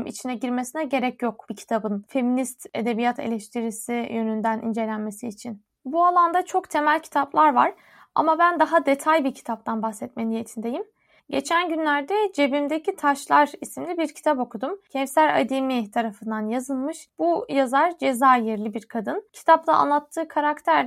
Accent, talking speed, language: native, 130 wpm, Turkish